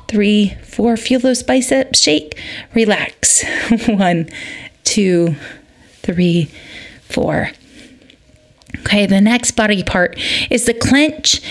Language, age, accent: English, 30-49, American